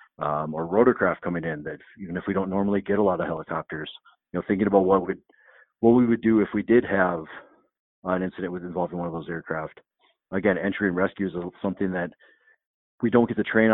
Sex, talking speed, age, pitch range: male, 225 wpm, 40-59, 85-105 Hz